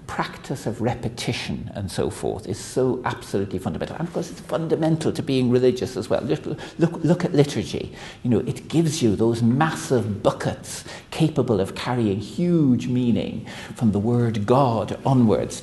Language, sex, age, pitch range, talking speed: English, male, 60-79, 110-135 Hz, 160 wpm